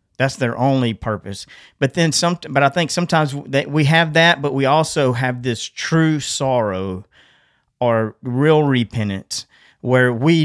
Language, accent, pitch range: English, American, 115-145 Hz